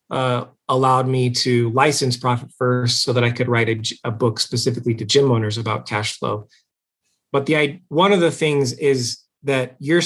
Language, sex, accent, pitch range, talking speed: English, male, American, 120-155 Hz, 180 wpm